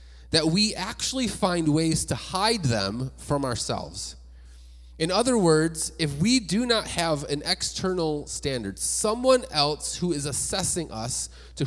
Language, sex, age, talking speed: English, male, 30-49, 145 wpm